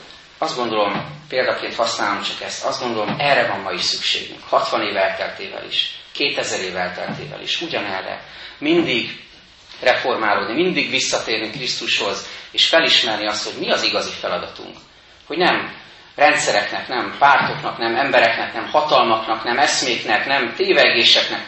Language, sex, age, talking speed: Hungarian, male, 30-49, 130 wpm